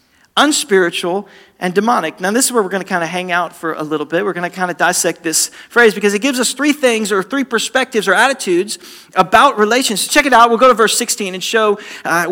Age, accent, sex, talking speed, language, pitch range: 40-59, American, male, 235 wpm, English, 185-245 Hz